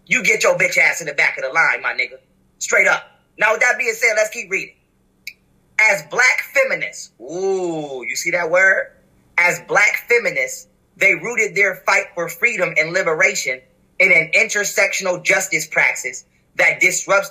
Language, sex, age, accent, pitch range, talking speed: English, male, 20-39, American, 180-255 Hz, 170 wpm